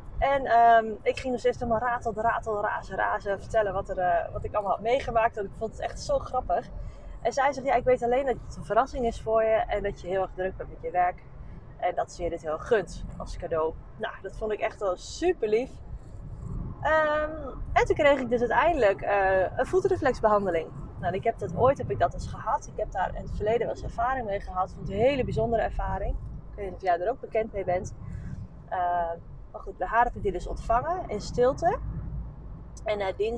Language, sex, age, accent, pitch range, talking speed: Dutch, female, 20-39, Dutch, 190-270 Hz, 225 wpm